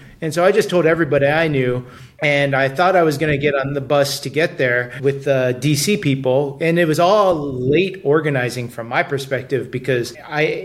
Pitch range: 130-160 Hz